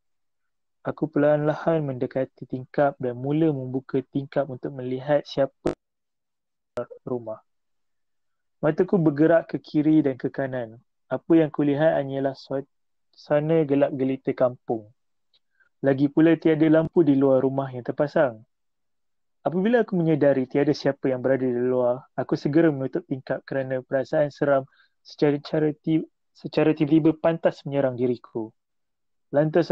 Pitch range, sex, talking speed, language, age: 130-155 Hz, male, 120 wpm, Malay, 30-49